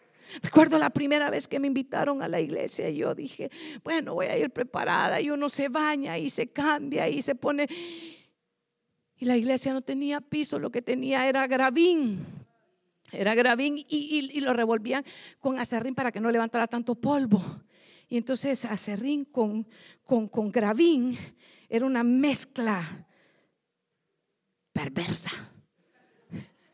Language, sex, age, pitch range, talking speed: Spanish, female, 50-69, 215-285 Hz, 145 wpm